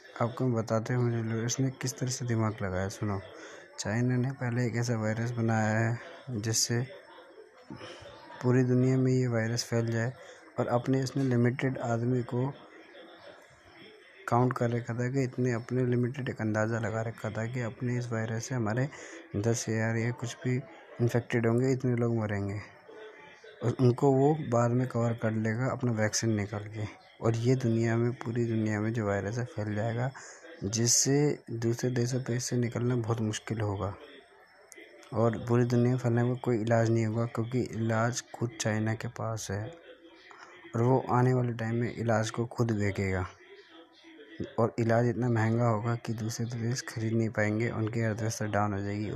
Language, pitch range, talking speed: Hindi, 110-125 Hz, 170 wpm